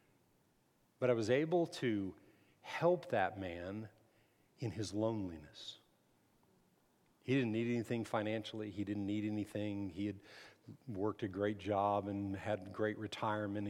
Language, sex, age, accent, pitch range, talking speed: English, male, 50-69, American, 105-125 Hz, 130 wpm